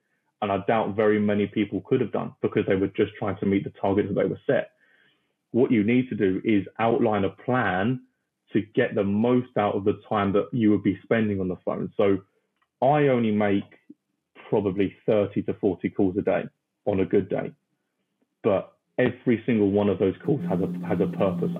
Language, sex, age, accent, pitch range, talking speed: English, male, 20-39, British, 95-110 Hz, 205 wpm